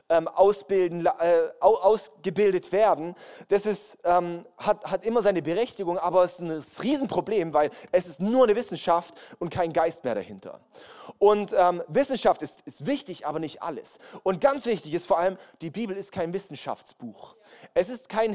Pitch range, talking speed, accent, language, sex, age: 195-275 Hz, 165 wpm, German, German, male, 20-39